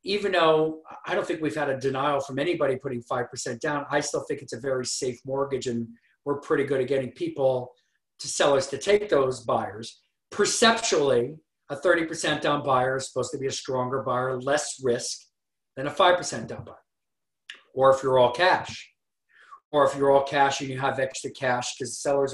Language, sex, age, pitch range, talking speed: English, male, 40-59, 130-155 Hz, 190 wpm